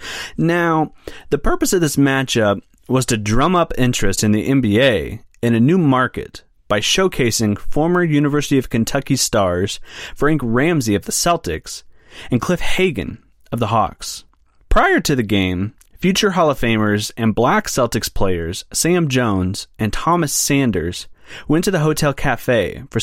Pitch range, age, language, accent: 105-150 Hz, 30-49, English, American